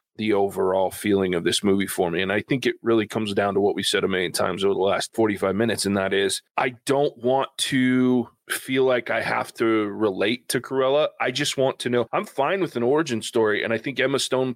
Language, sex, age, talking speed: English, male, 30-49, 240 wpm